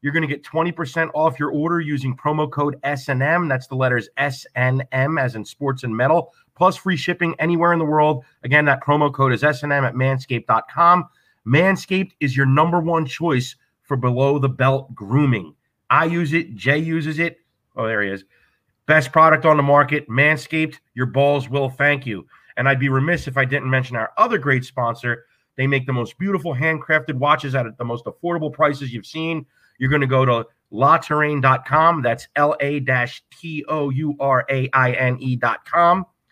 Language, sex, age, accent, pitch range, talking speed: English, male, 30-49, American, 125-155 Hz, 170 wpm